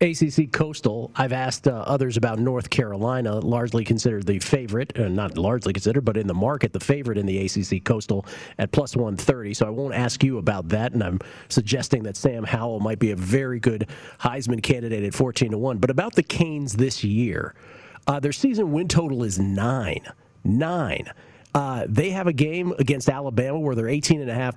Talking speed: 190 wpm